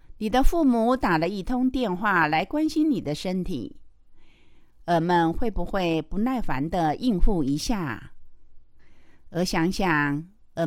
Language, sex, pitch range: Chinese, female, 160-245 Hz